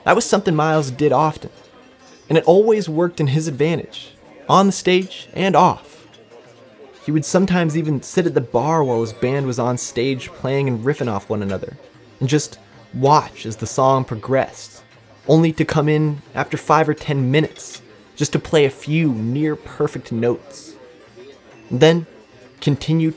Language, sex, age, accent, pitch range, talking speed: English, male, 20-39, American, 130-160 Hz, 165 wpm